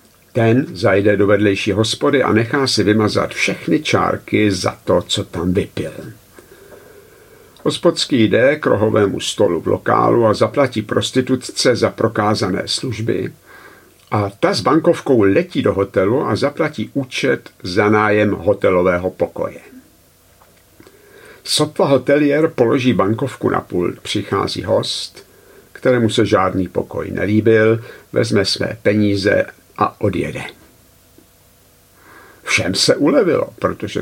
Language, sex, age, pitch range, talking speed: Czech, male, 60-79, 100-130 Hz, 115 wpm